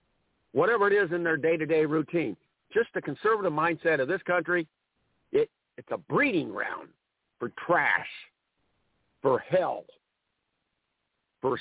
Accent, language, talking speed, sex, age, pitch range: American, English, 125 wpm, male, 50-69, 145-200 Hz